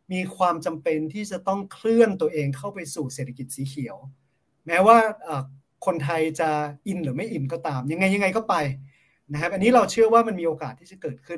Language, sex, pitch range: Thai, male, 140-190 Hz